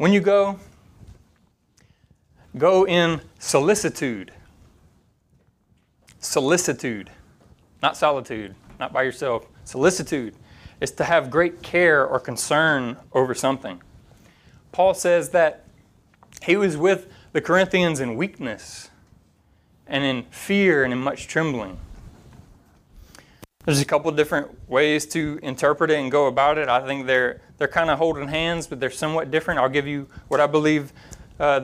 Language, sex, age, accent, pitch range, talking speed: English, male, 30-49, American, 135-170 Hz, 135 wpm